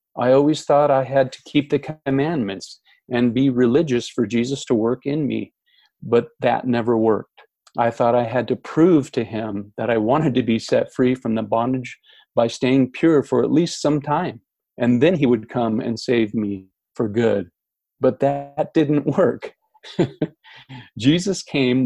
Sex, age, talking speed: male, 40-59, 175 wpm